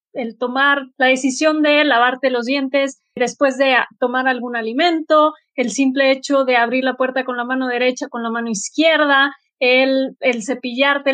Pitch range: 260-315 Hz